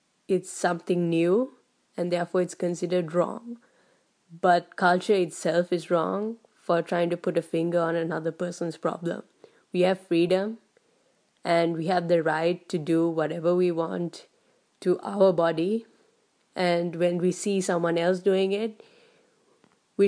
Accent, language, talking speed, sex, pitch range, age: Indian, English, 145 wpm, female, 175-220 Hz, 20-39